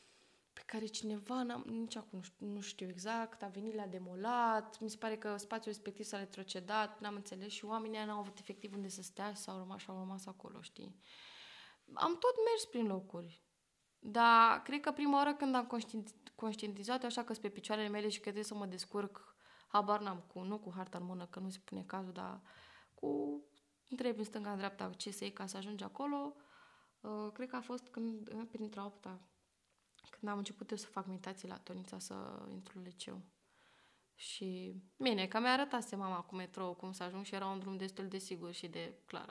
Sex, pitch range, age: female, 190-230 Hz, 20-39